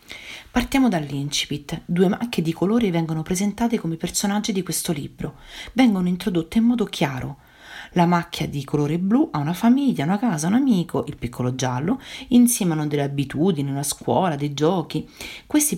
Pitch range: 145-215 Hz